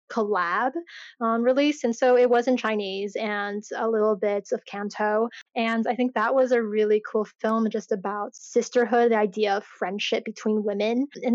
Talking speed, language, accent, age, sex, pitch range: 180 wpm, English, American, 20-39, female, 215-245 Hz